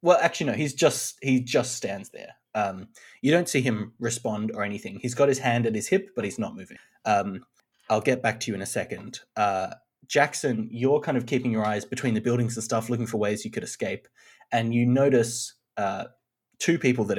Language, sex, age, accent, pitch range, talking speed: English, male, 20-39, Australian, 105-125 Hz, 220 wpm